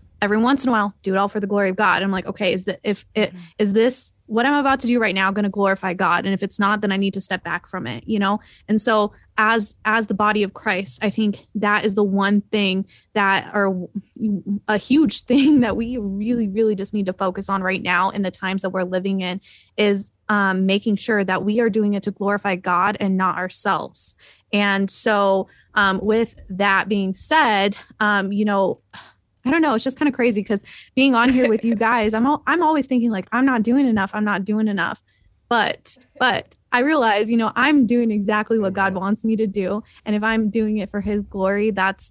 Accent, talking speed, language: American, 230 wpm, English